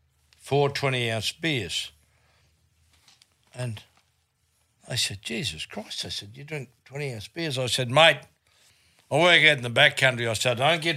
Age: 60-79